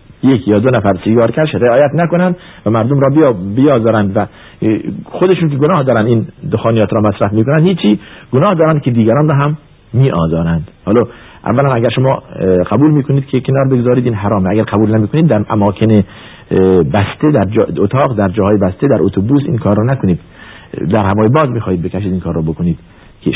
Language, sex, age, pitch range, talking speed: Persian, male, 50-69, 100-135 Hz, 180 wpm